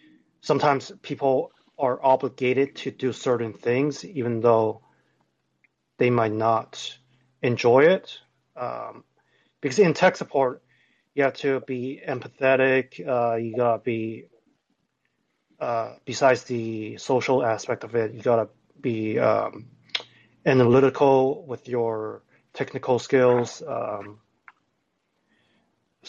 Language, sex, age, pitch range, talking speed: English, male, 30-49, 115-140 Hz, 105 wpm